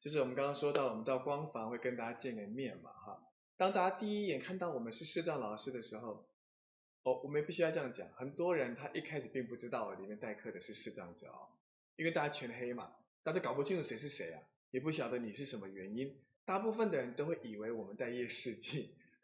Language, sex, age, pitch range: Chinese, male, 20-39, 120-170 Hz